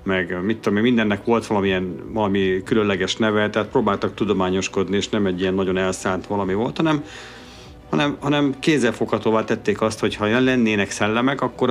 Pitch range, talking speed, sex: 95-120 Hz, 165 wpm, male